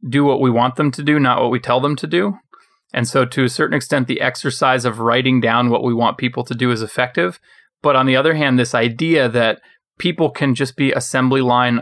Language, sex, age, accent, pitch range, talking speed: English, male, 30-49, American, 115-135 Hz, 240 wpm